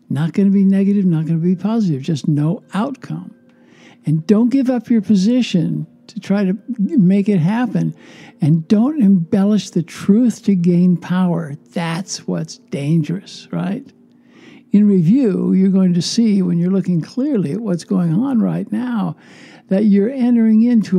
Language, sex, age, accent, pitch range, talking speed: English, male, 60-79, American, 170-230 Hz, 165 wpm